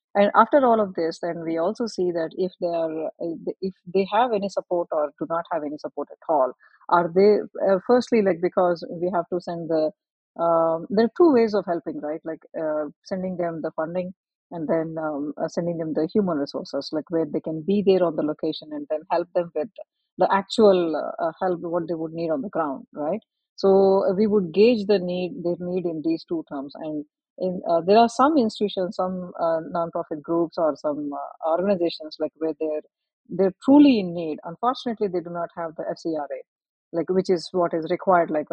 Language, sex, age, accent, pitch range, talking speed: English, female, 30-49, Indian, 160-200 Hz, 210 wpm